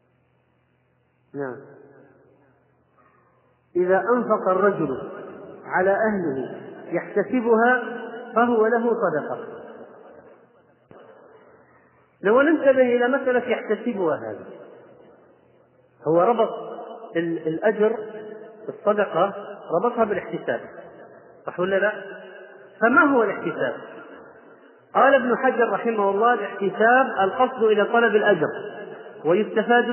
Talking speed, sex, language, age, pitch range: 80 wpm, male, Arabic, 40-59, 195-245 Hz